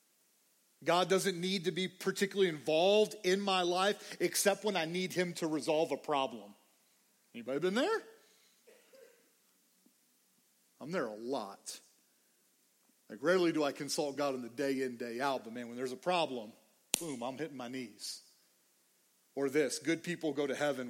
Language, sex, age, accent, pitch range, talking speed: English, male, 40-59, American, 135-185 Hz, 160 wpm